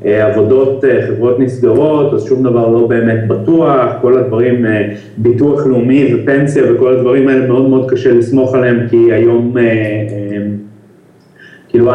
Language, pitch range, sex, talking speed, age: Hebrew, 110-135 Hz, male, 125 wpm, 30-49